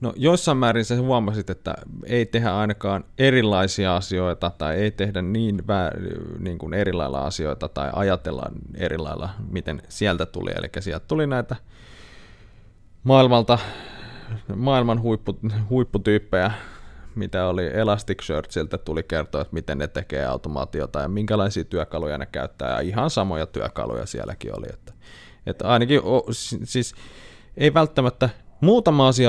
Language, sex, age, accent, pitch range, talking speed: Finnish, male, 30-49, native, 90-115 Hz, 135 wpm